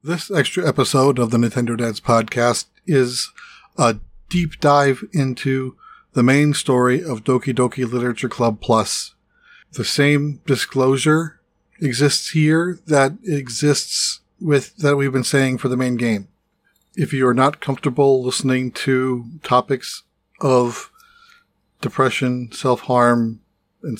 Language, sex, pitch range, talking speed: English, male, 125-155 Hz, 125 wpm